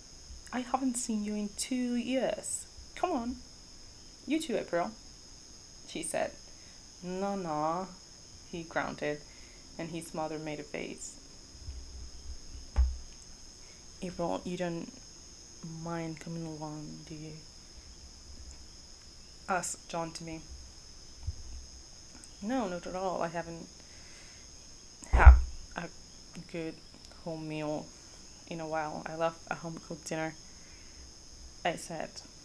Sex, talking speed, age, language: female, 105 wpm, 20-39, English